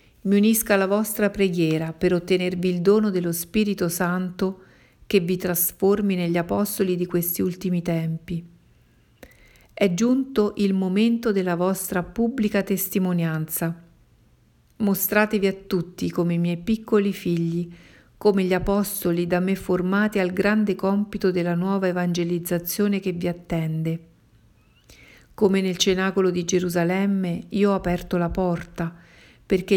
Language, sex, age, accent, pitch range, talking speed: Italian, female, 50-69, native, 175-200 Hz, 125 wpm